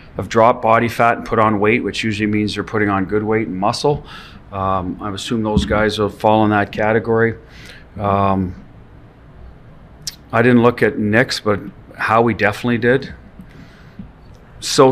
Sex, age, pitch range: male, 40-59, 100-125 Hz